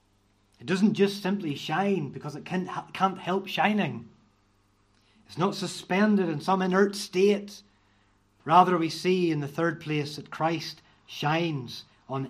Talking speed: 140 wpm